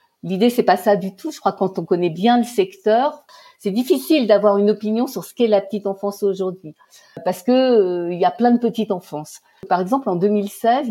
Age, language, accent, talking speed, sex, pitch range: 50-69, French, French, 225 wpm, female, 185-240 Hz